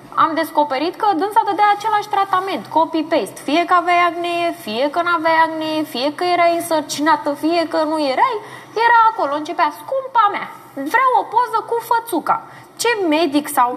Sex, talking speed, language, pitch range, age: female, 160 wpm, Romanian, 280-405 Hz, 20-39